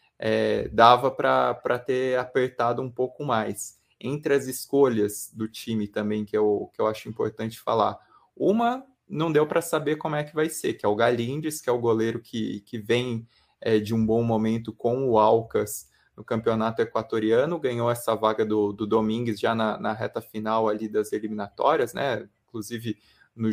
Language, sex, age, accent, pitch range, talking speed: Portuguese, male, 20-39, Brazilian, 110-130 Hz, 180 wpm